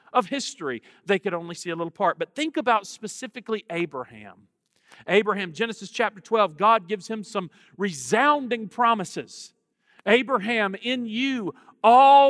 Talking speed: 135 wpm